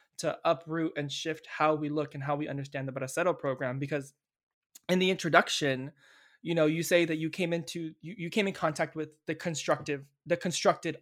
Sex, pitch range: male, 145-170 Hz